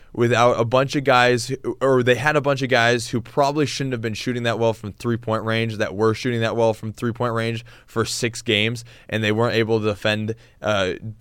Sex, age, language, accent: male, 20-39, English, American